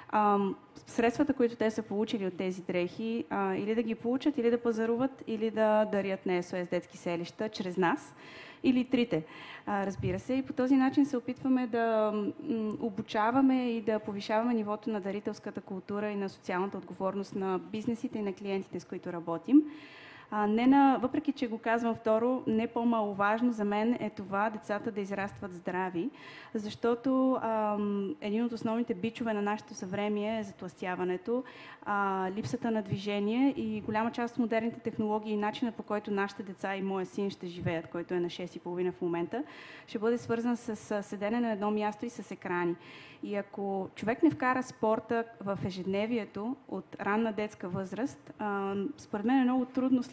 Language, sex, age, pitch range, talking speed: Bulgarian, female, 20-39, 195-235 Hz, 165 wpm